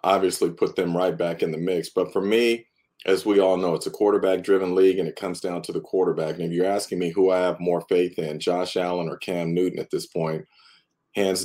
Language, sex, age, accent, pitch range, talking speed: English, male, 40-59, American, 85-105 Hz, 245 wpm